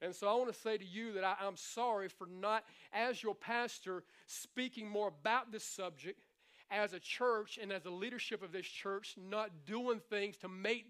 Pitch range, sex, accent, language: 190-235 Hz, male, American, English